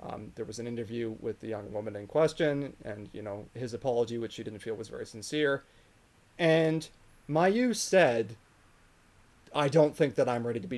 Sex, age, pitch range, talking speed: male, 30-49, 120-155 Hz, 190 wpm